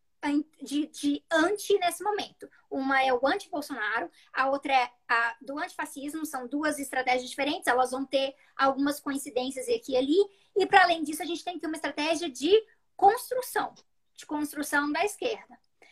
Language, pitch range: Portuguese, 270-355 Hz